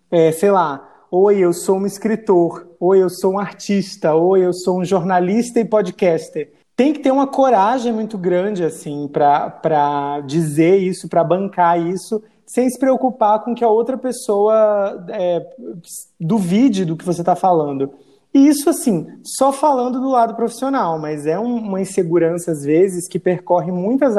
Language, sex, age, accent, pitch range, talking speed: Portuguese, male, 20-39, Brazilian, 175-225 Hz, 165 wpm